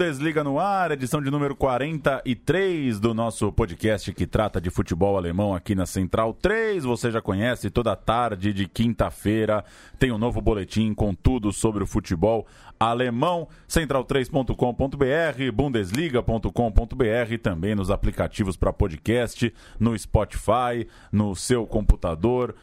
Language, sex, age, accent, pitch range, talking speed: Portuguese, male, 20-39, Brazilian, 100-140 Hz, 125 wpm